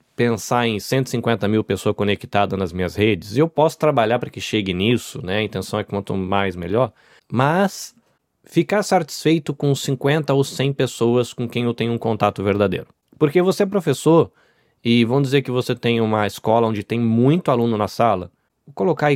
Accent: Brazilian